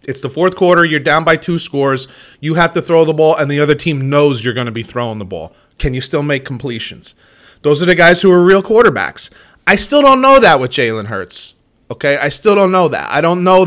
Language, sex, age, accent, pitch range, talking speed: English, male, 20-39, American, 140-180 Hz, 250 wpm